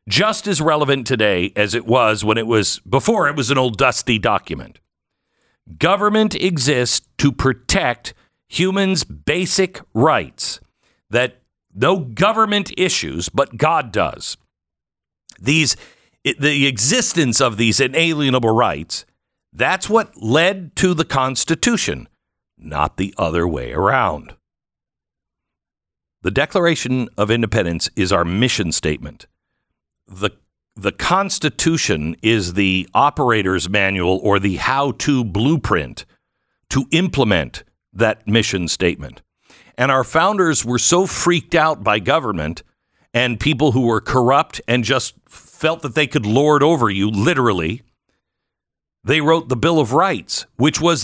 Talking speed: 125 wpm